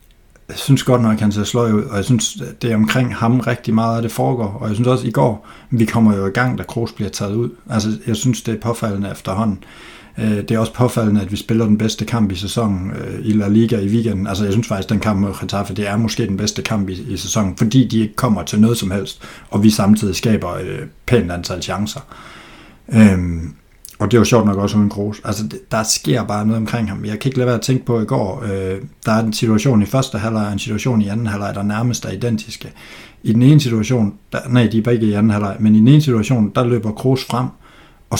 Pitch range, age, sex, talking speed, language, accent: 105-120 Hz, 60-79, male, 260 wpm, Danish, native